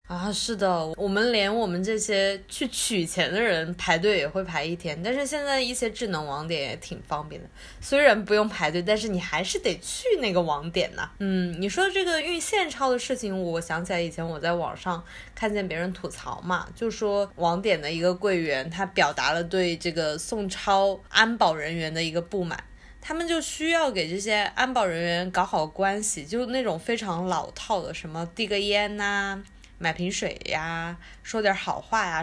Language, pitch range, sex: Chinese, 175-230 Hz, female